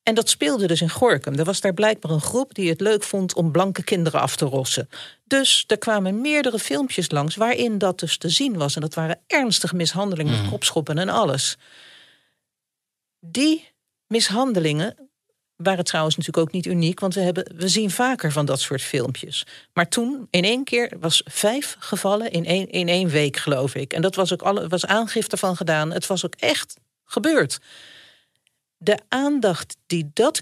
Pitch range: 160-220 Hz